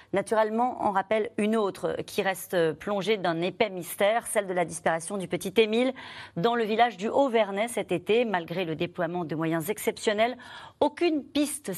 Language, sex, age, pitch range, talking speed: French, female, 40-59, 175-230 Hz, 170 wpm